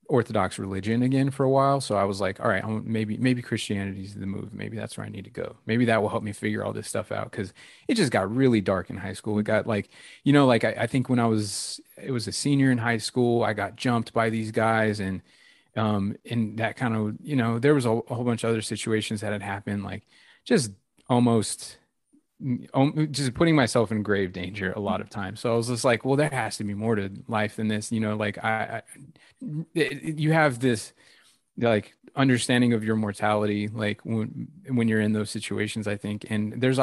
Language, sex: English, male